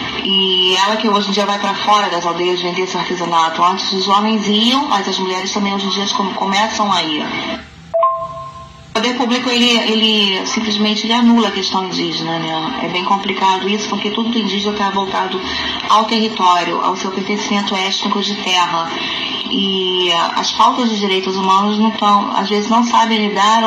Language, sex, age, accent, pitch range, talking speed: Portuguese, female, 20-39, Brazilian, 190-225 Hz, 170 wpm